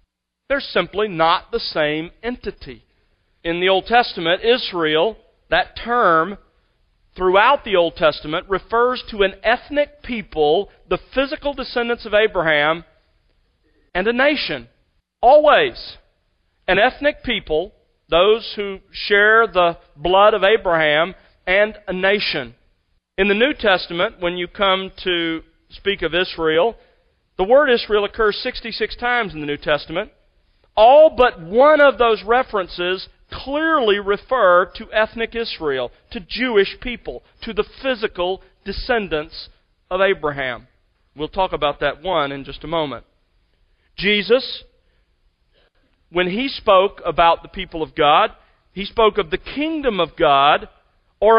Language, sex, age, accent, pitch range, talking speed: English, male, 40-59, American, 165-230 Hz, 130 wpm